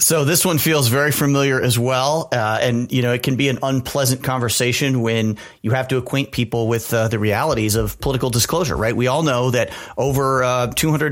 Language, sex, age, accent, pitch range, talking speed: English, male, 40-59, American, 110-130 Hz, 215 wpm